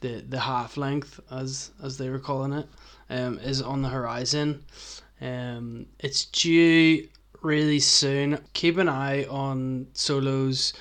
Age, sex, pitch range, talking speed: 20-39, male, 125-145 Hz, 140 wpm